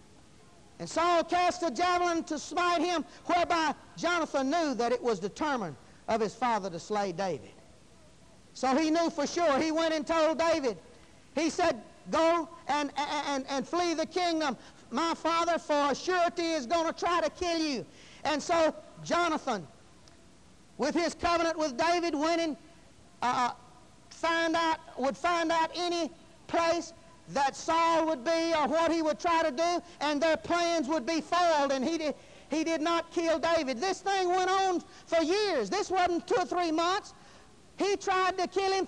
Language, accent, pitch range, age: English, American, 320-385 Hz, 50-69